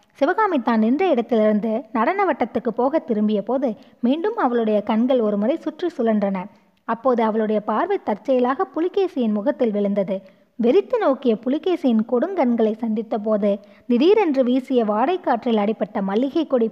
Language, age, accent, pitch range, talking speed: Tamil, 20-39, native, 215-280 Hz, 125 wpm